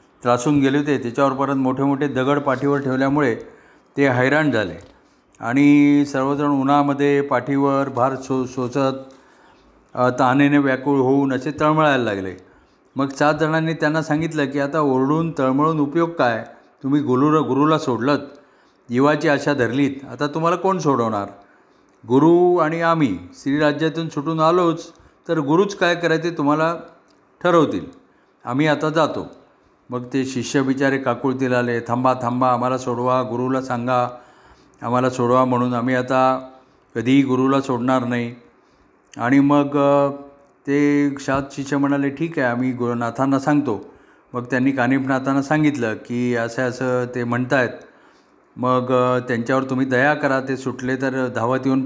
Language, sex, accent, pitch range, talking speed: Marathi, male, native, 125-145 Hz, 130 wpm